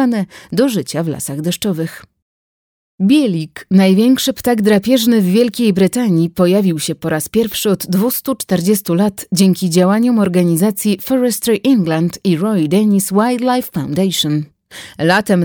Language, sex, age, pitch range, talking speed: Polish, female, 30-49, 175-230 Hz, 120 wpm